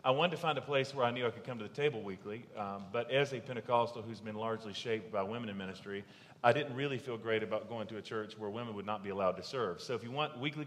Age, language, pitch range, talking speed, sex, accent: 40-59, English, 110-135 Hz, 290 wpm, male, American